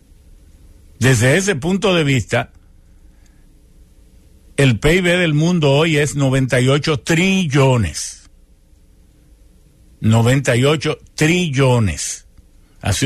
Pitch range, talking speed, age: 90-145 Hz, 75 wpm, 60-79